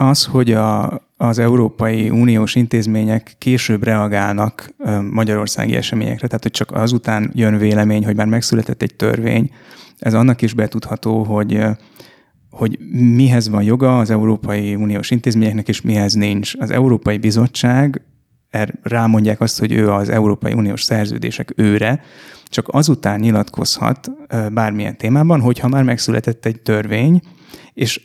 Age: 30-49